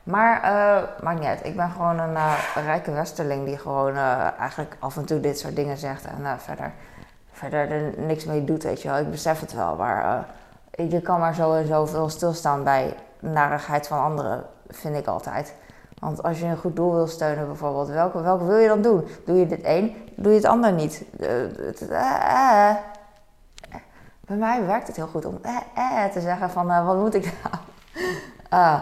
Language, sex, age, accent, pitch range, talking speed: Dutch, female, 20-39, Dutch, 165-210 Hz, 210 wpm